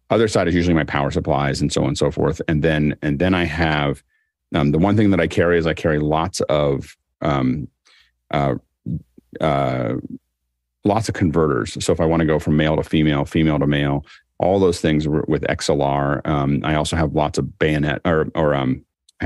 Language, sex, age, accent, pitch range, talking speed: English, male, 40-59, American, 75-90 Hz, 205 wpm